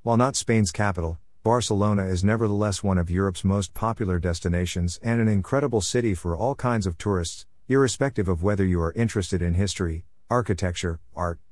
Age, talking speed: 50-69, 165 wpm